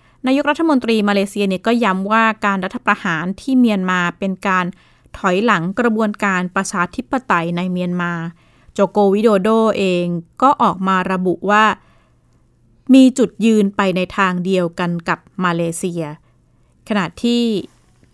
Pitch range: 180-225 Hz